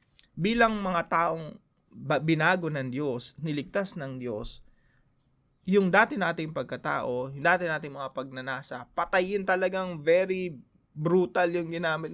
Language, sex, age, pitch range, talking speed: English, male, 20-39, 140-180 Hz, 120 wpm